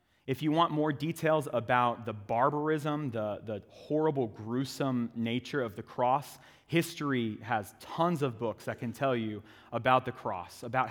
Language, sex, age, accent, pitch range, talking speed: English, male, 30-49, American, 115-150 Hz, 160 wpm